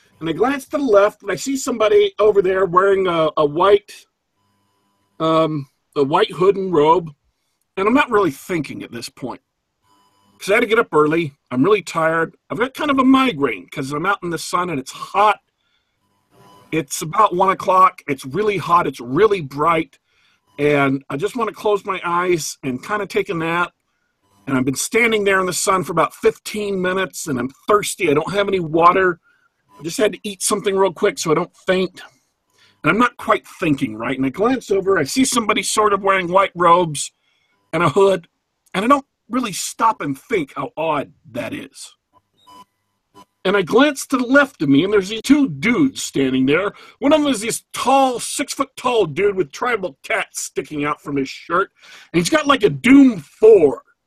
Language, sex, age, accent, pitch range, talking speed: English, male, 50-69, American, 150-225 Hz, 200 wpm